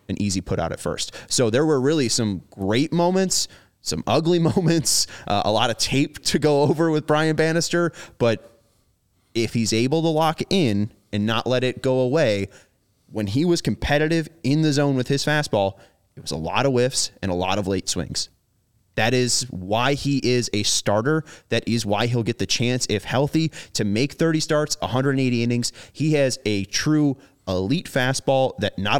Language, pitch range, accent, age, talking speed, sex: English, 105-145 Hz, American, 20-39, 190 wpm, male